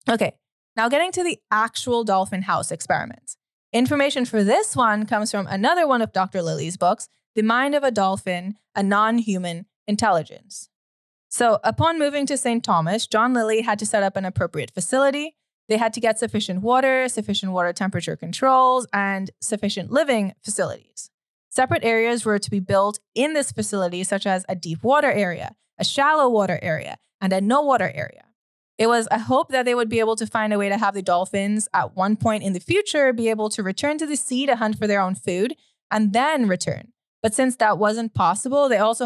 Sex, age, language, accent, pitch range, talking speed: female, 20-39, English, American, 195-250 Hz, 195 wpm